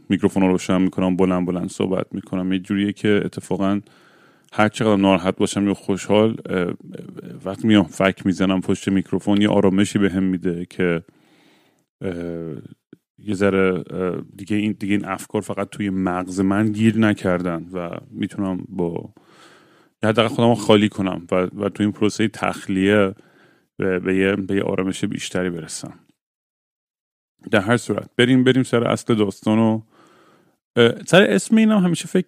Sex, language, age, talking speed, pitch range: male, Persian, 30-49, 135 wpm, 95-115 Hz